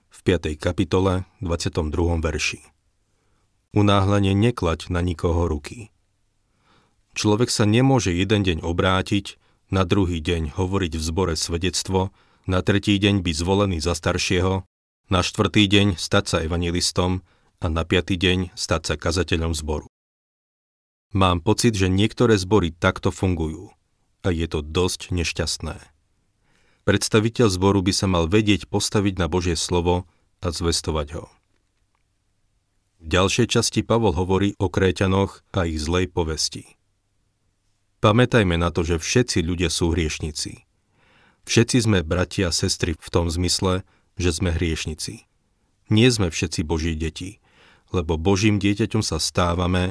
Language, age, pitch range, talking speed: Slovak, 40-59, 85-100 Hz, 130 wpm